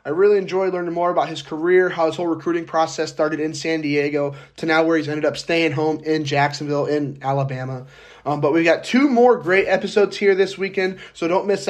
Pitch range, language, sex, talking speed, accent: 150-180 Hz, English, male, 220 wpm, American